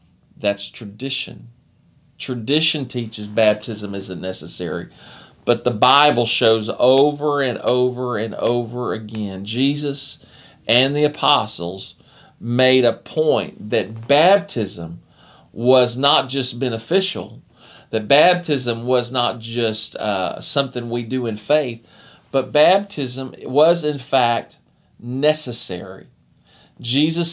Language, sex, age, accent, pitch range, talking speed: English, male, 40-59, American, 120-145 Hz, 105 wpm